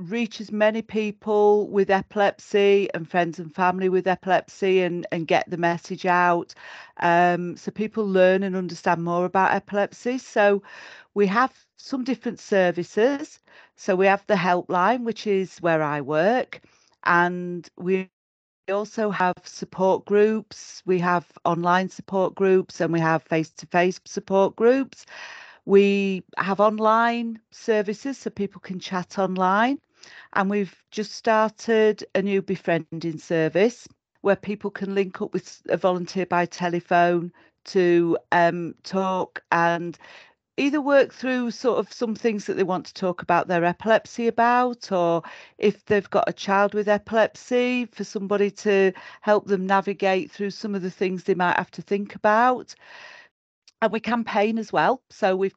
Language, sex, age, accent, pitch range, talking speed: English, female, 40-59, British, 180-215 Hz, 150 wpm